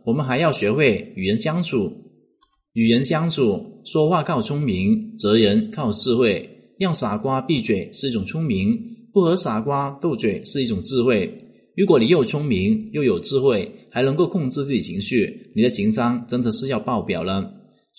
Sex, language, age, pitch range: male, Chinese, 30-49, 125-205 Hz